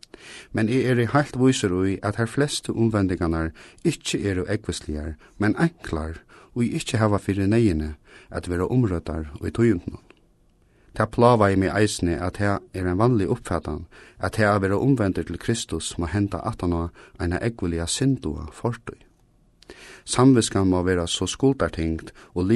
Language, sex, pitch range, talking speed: English, male, 85-110 Hz, 145 wpm